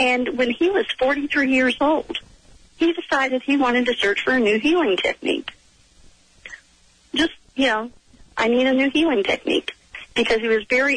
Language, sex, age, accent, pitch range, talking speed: English, female, 40-59, American, 215-270 Hz, 170 wpm